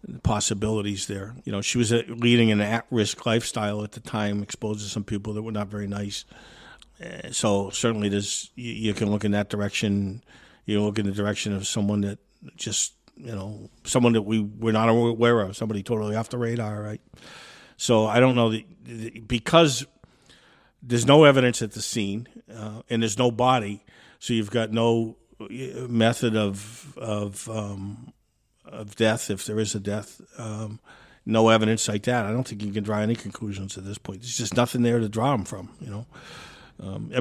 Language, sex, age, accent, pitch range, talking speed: English, male, 50-69, American, 105-120 Hz, 190 wpm